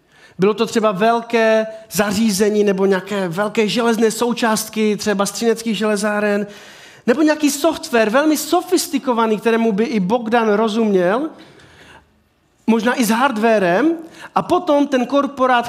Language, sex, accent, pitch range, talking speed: Czech, male, native, 215-265 Hz, 120 wpm